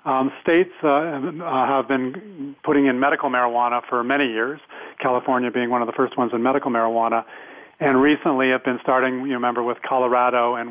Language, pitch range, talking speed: English, 120-135 Hz, 180 wpm